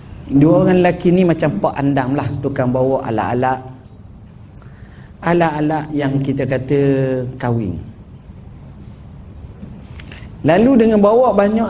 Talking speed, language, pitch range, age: 105 wpm, Malay, 105-165 Hz, 40-59